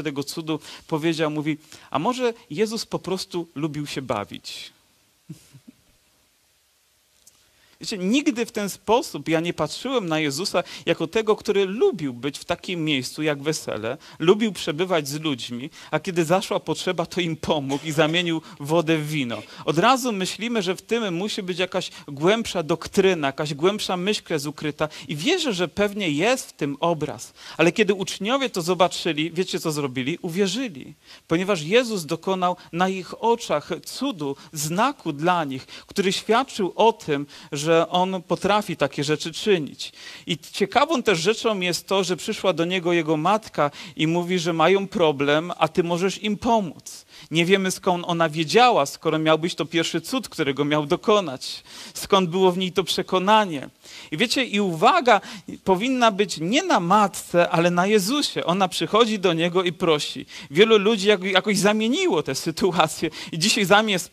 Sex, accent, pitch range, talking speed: male, native, 160-205 Hz, 160 wpm